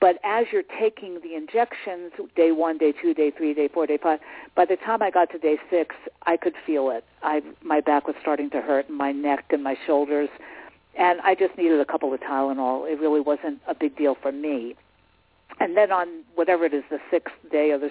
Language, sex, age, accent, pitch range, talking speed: English, female, 50-69, American, 150-190 Hz, 225 wpm